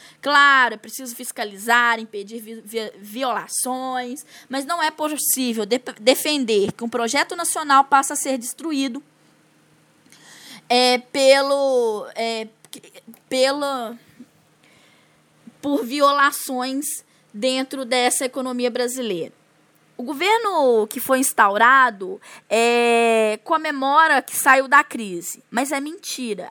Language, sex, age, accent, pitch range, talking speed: Portuguese, female, 10-29, Brazilian, 235-285 Hz, 105 wpm